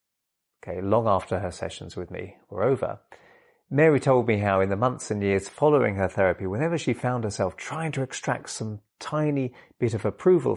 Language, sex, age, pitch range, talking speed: English, male, 30-49, 95-125 Hz, 185 wpm